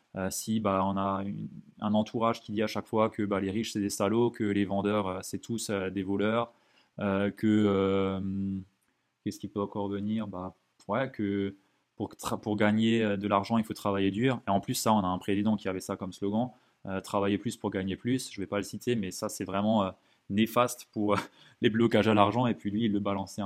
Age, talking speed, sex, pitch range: 20-39, 235 wpm, male, 100-115 Hz